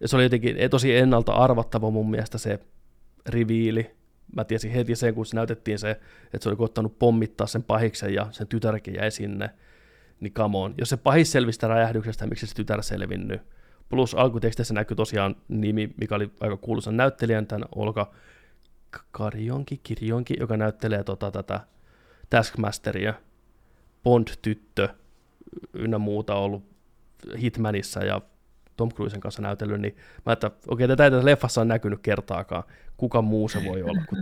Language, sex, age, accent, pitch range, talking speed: Finnish, male, 20-39, native, 105-125 Hz, 150 wpm